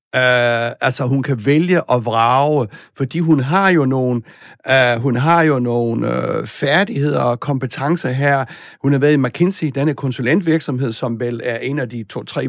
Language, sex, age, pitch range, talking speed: Danish, male, 60-79, 120-150 Hz, 160 wpm